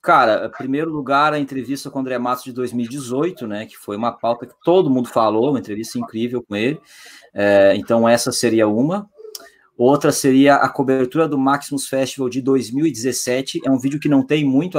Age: 20-39